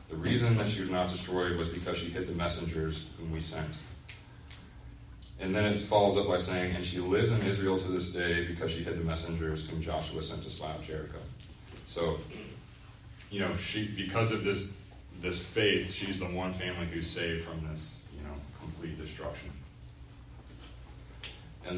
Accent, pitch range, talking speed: American, 80-90 Hz, 175 wpm